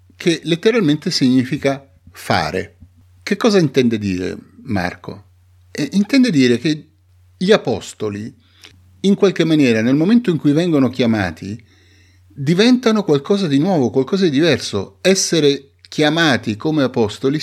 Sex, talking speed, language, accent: male, 120 wpm, Italian, native